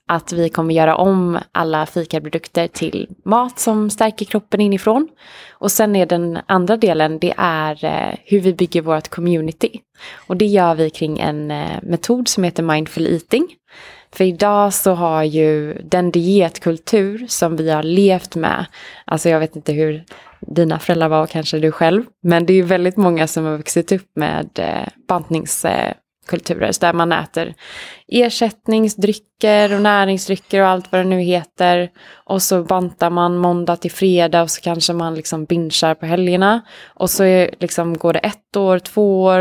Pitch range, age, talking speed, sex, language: 160-195 Hz, 20-39, 165 wpm, female, Swedish